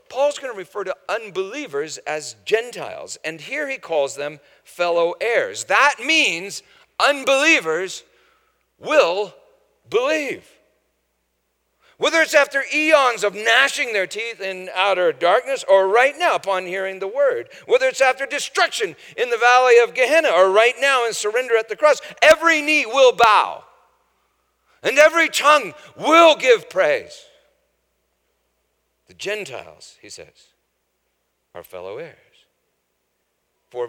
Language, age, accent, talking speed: English, 50-69, American, 125 wpm